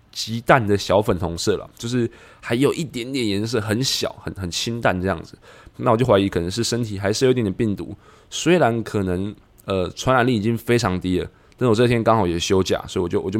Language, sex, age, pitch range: Chinese, male, 20-39, 95-115 Hz